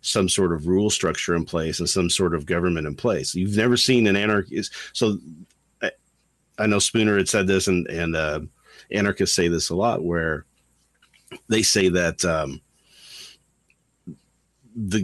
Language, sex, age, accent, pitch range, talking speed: English, male, 50-69, American, 85-105 Hz, 165 wpm